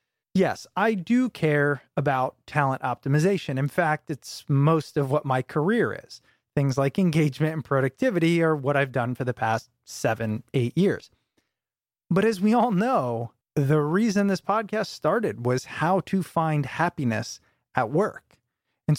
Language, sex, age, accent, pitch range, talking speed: English, male, 30-49, American, 145-195 Hz, 155 wpm